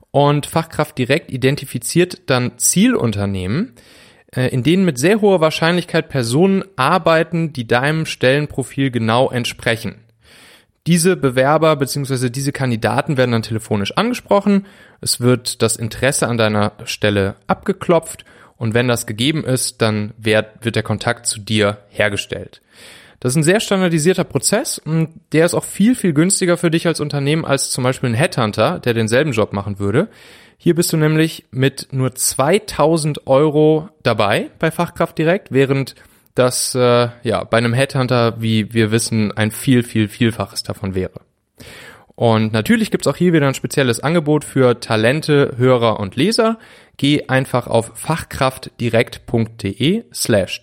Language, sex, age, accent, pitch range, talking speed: German, male, 30-49, German, 115-160 Hz, 145 wpm